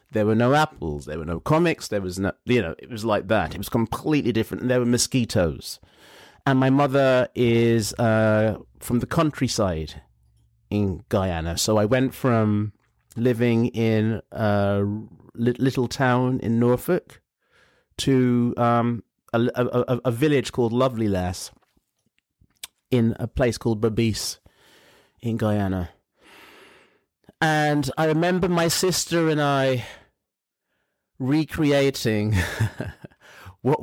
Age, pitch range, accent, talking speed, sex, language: 30-49, 110-150 Hz, British, 125 wpm, male, English